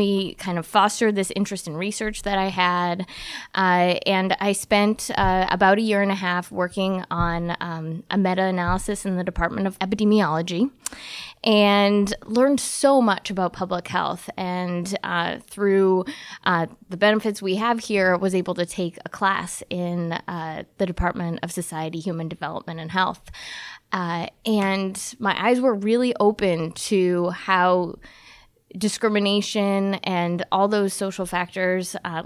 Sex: female